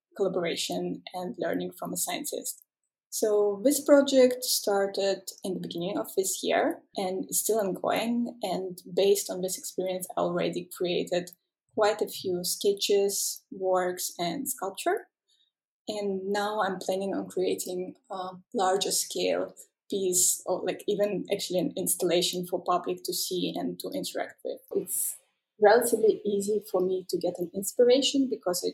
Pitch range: 180-220 Hz